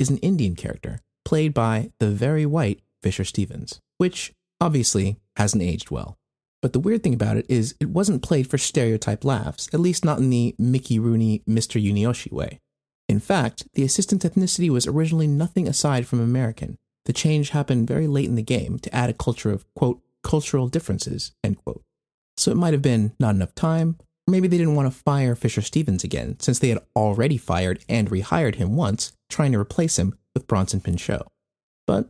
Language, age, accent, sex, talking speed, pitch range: English, 30-49, American, male, 195 wpm, 105-150 Hz